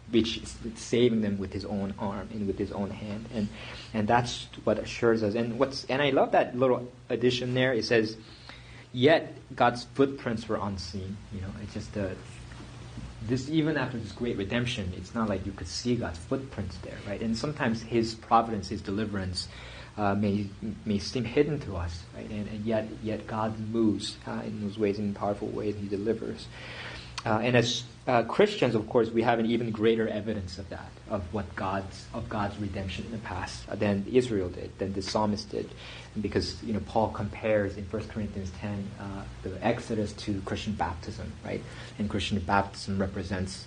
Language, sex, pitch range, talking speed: English, male, 100-115 Hz, 190 wpm